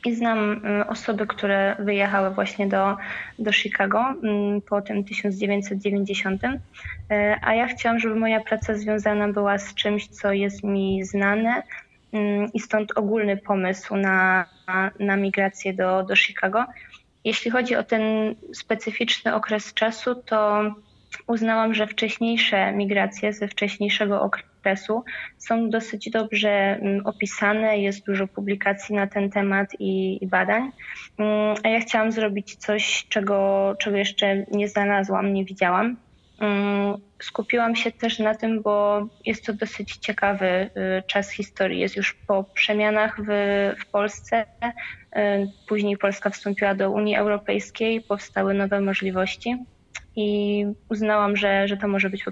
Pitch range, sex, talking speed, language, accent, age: 200-220 Hz, female, 130 wpm, Polish, native, 20-39